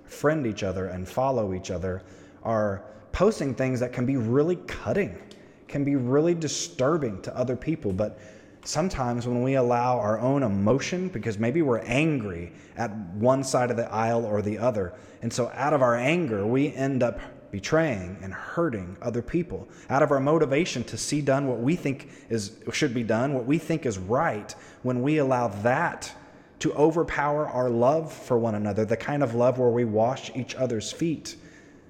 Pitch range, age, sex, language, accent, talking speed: 110-140 Hz, 20-39, male, English, American, 180 wpm